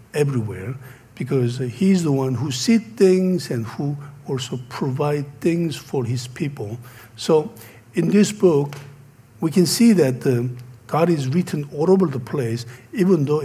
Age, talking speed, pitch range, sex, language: 60-79, 150 wpm, 120-155 Hz, male, English